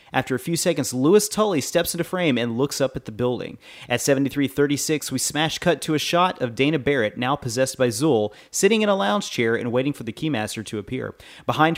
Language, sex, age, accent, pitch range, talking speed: English, male, 30-49, American, 125-160 Hz, 220 wpm